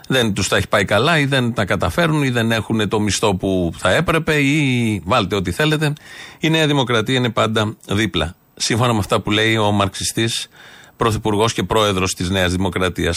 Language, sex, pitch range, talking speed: Greek, male, 105-135 Hz, 185 wpm